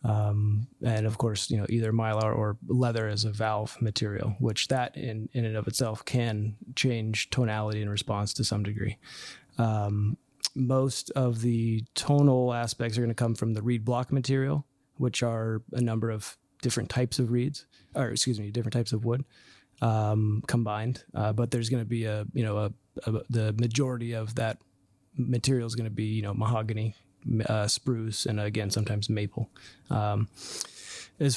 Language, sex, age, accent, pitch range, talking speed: English, male, 20-39, American, 110-125 Hz, 175 wpm